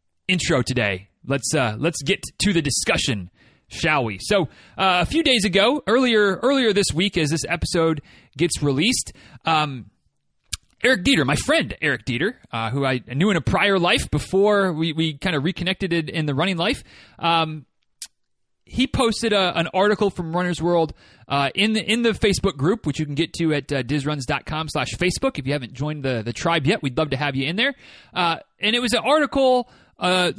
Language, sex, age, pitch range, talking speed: English, male, 30-49, 130-190 Hz, 195 wpm